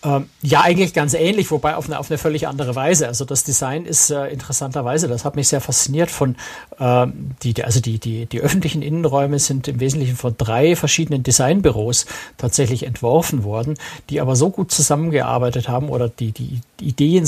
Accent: German